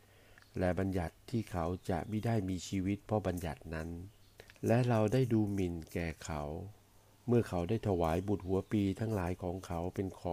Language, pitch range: Thai, 85-105 Hz